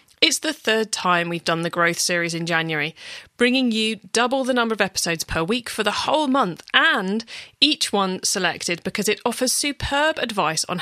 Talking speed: 190 wpm